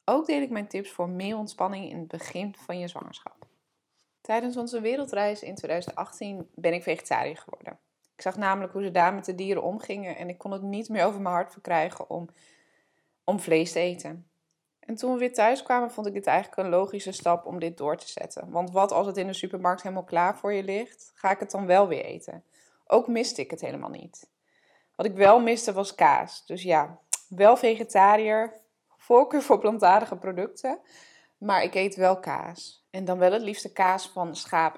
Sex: female